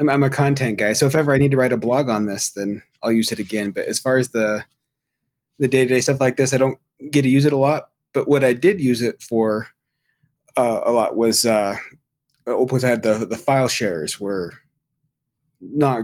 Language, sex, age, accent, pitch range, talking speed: English, male, 30-49, American, 110-135 Hz, 215 wpm